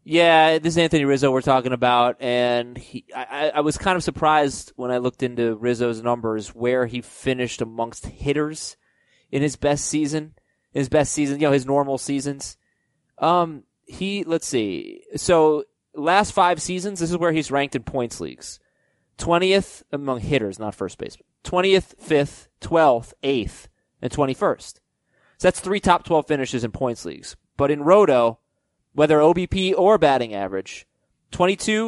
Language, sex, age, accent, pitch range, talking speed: English, male, 20-39, American, 125-185 Hz, 160 wpm